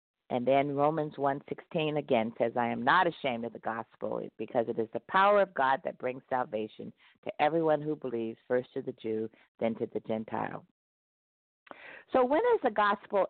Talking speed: 180 wpm